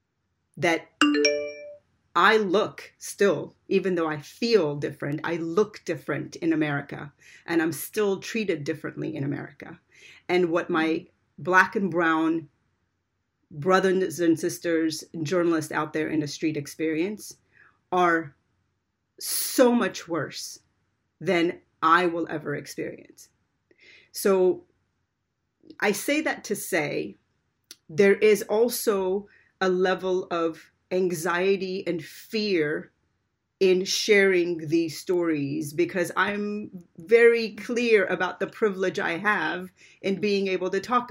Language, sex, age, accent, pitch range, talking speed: English, female, 30-49, American, 160-200 Hz, 115 wpm